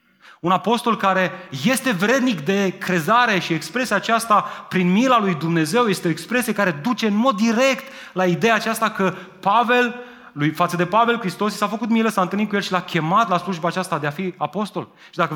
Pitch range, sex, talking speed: 170-225 Hz, male, 205 wpm